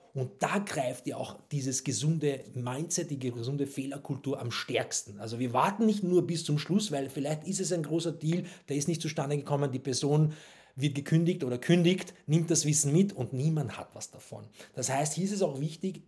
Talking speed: 205 wpm